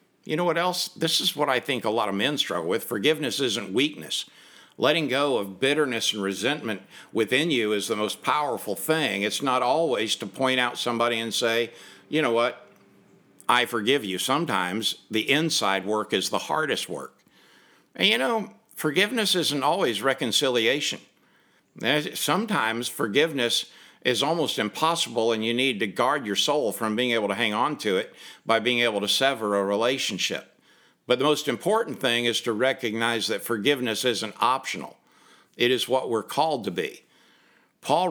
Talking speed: 170 wpm